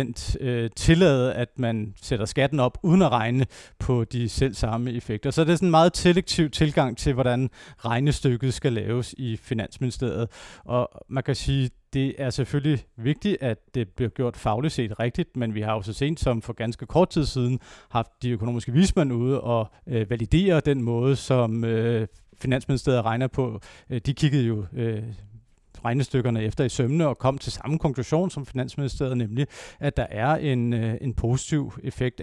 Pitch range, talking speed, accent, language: 115-140 Hz, 175 wpm, native, Danish